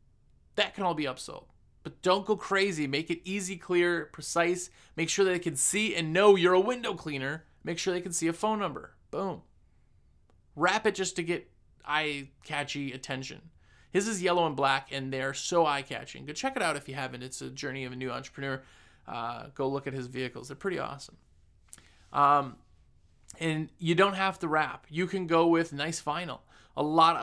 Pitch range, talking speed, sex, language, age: 135-170 Hz, 195 wpm, male, English, 30-49